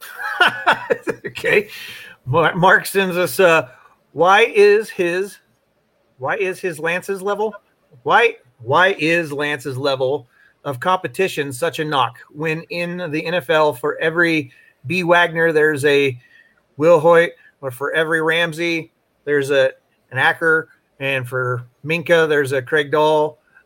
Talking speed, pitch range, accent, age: 130 wpm, 145-195 Hz, American, 40-59